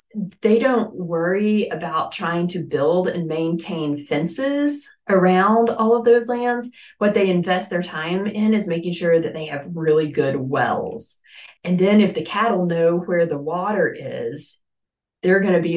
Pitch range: 150-185 Hz